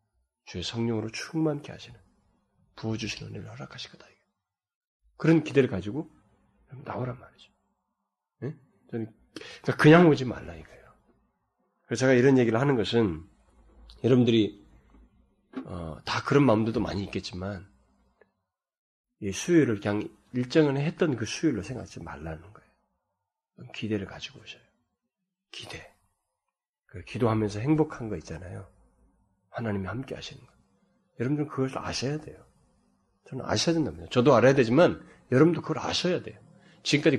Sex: male